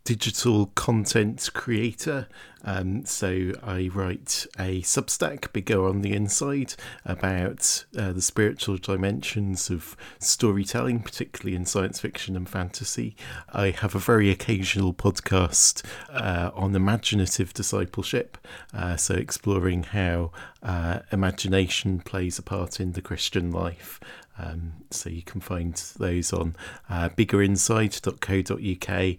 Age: 40-59